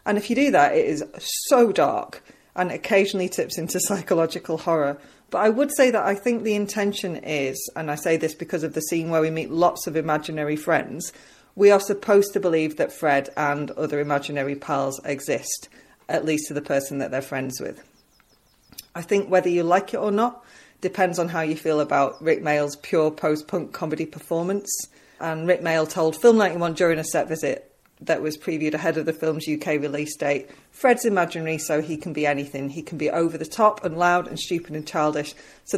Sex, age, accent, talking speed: female, 30-49, British, 205 wpm